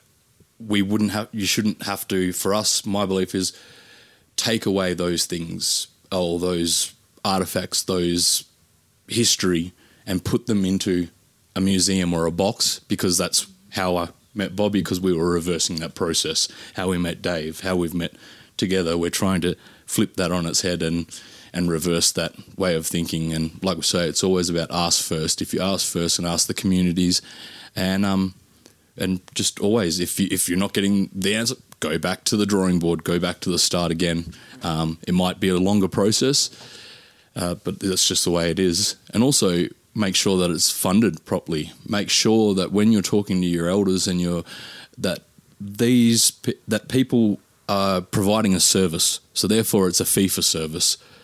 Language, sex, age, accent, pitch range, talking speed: English, male, 20-39, Australian, 85-100 Hz, 180 wpm